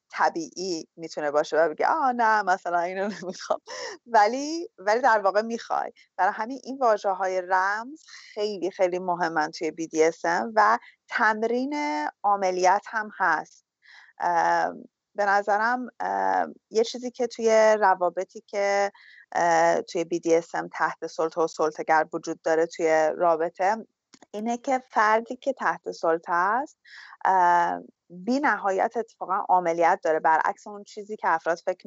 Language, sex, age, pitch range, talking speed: English, female, 30-49, 165-215 Hz, 125 wpm